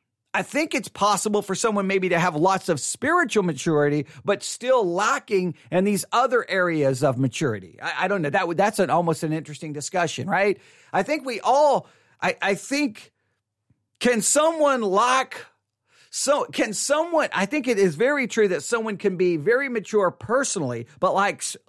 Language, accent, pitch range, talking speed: English, American, 160-240 Hz, 175 wpm